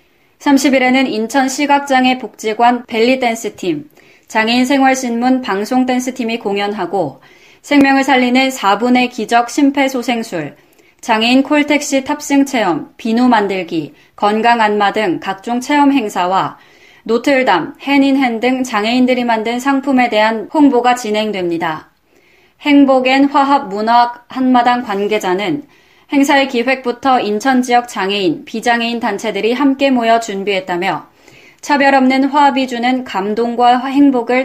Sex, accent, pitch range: female, native, 210-265 Hz